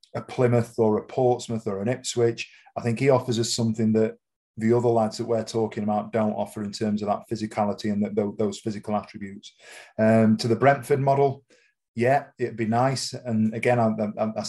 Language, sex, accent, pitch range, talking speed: English, male, British, 110-120 Hz, 195 wpm